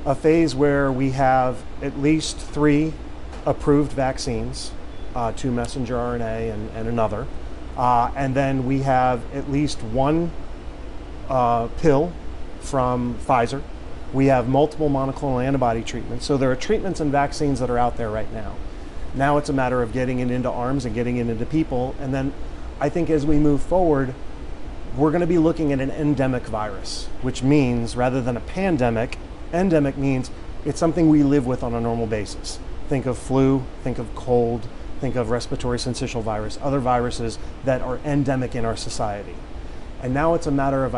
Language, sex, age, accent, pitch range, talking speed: English, male, 30-49, American, 115-140 Hz, 175 wpm